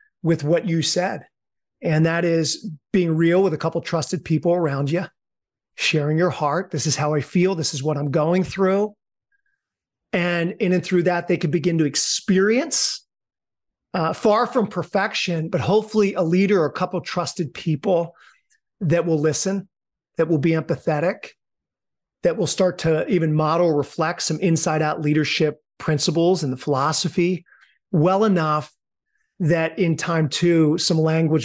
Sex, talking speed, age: male, 160 wpm, 40-59